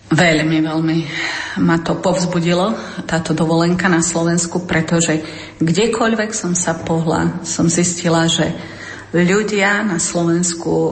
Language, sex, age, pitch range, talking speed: Slovak, female, 40-59, 165-185 Hz, 110 wpm